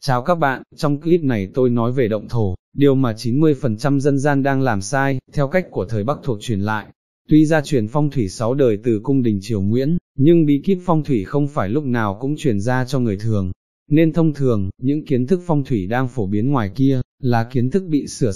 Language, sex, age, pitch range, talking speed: English, male, 20-39, 115-145 Hz, 235 wpm